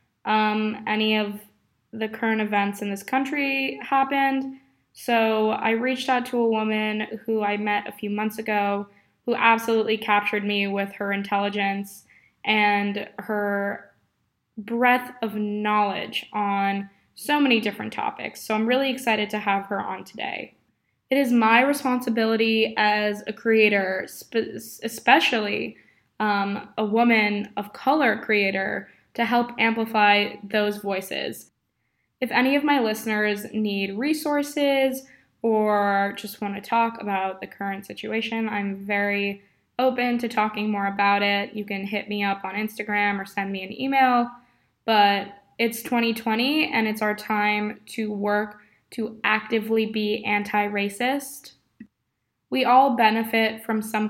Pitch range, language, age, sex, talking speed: 205-230 Hz, English, 10-29, female, 135 wpm